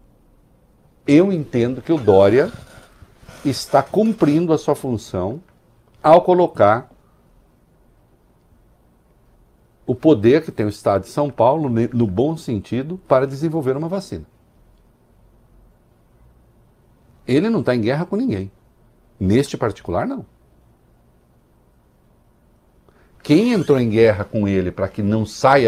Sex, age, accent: male, 60-79, Brazilian